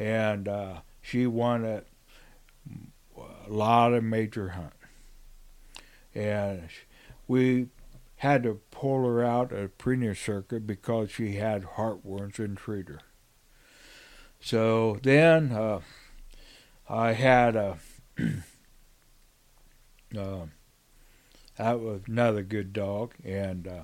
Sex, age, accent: male, 60-79, American